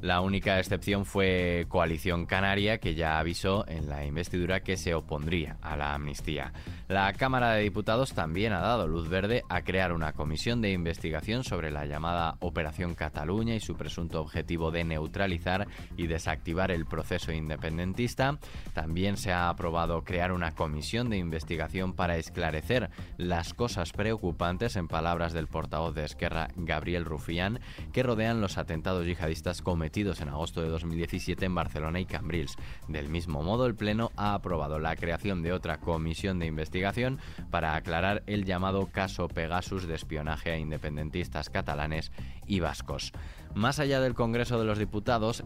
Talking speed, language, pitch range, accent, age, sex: 155 wpm, Spanish, 80-100 Hz, Spanish, 20-39, male